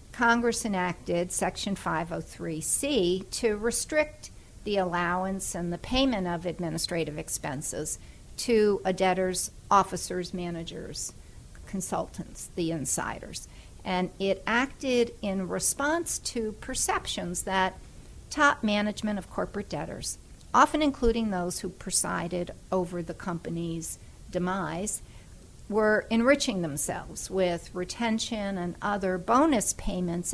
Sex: female